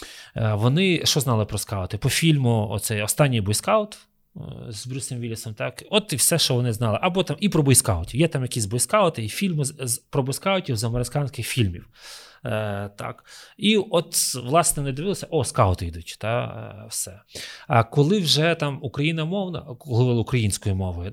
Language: Ukrainian